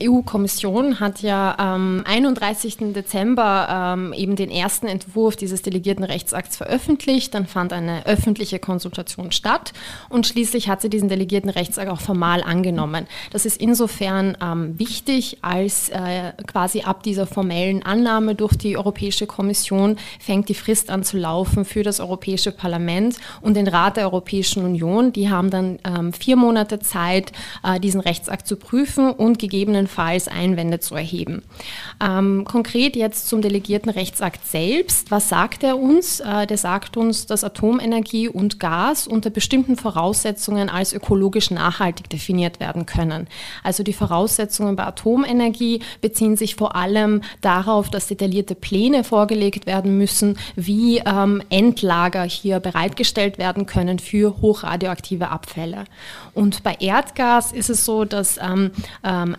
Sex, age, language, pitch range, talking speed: female, 20-39, German, 185-220 Hz, 145 wpm